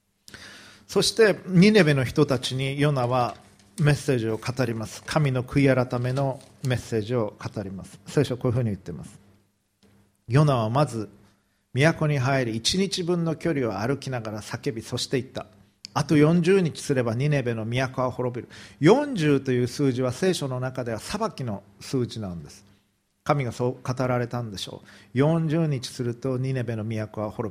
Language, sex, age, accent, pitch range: Japanese, male, 40-59, native, 105-150 Hz